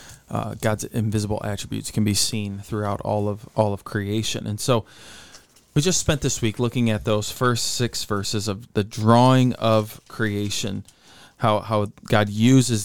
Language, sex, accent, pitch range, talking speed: English, male, American, 100-120 Hz, 165 wpm